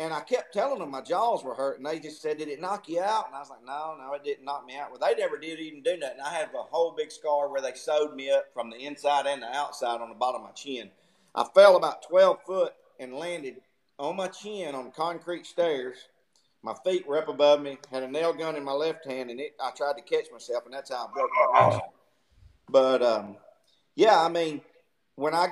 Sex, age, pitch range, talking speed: male, 40-59, 145-205 Hz, 250 wpm